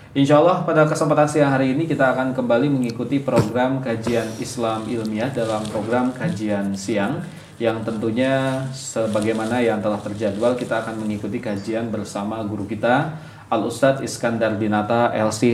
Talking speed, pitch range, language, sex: 140 wpm, 115-140 Hz, Indonesian, male